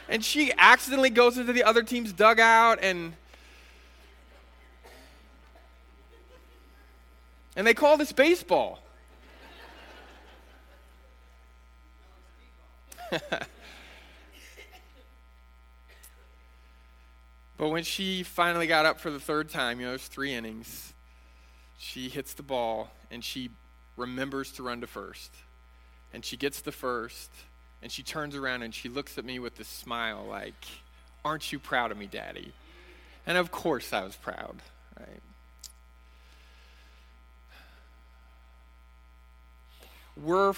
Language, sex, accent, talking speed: English, male, American, 110 wpm